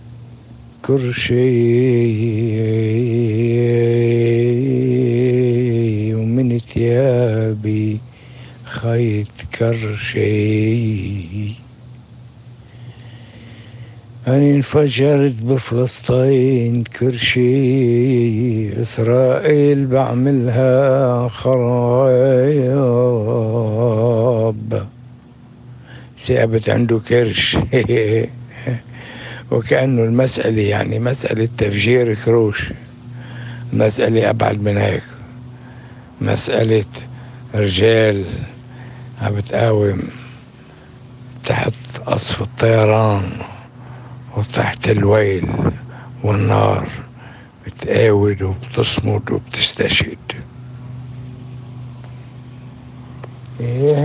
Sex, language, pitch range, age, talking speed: male, Arabic, 115-125 Hz, 60-79, 40 wpm